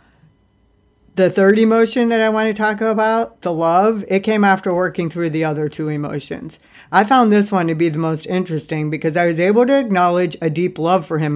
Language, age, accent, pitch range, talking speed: English, 50-69, American, 160-200 Hz, 210 wpm